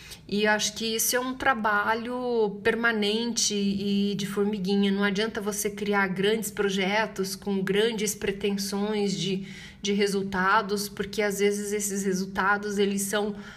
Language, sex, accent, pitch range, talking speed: Portuguese, female, Brazilian, 195-220 Hz, 130 wpm